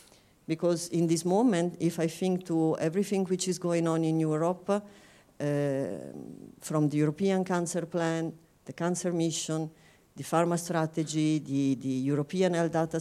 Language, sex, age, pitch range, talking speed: English, female, 50-69, 160-185 Hz, 150 wpm